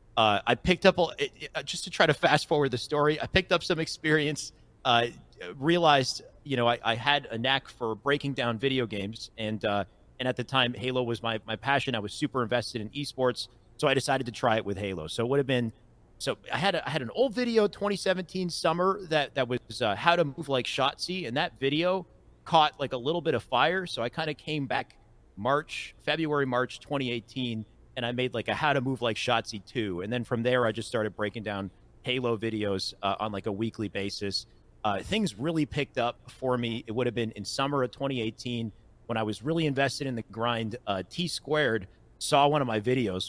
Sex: male